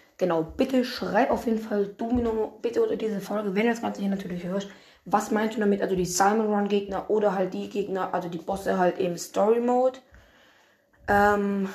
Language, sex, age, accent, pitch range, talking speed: German, female, 20-39, German, 185-230 Hz, 185 wpm